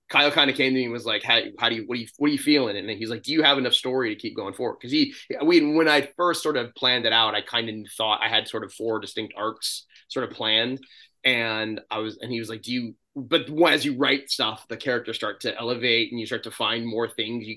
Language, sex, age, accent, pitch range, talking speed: English, male, 20-39, American, 110-135 Hz, 285 wpm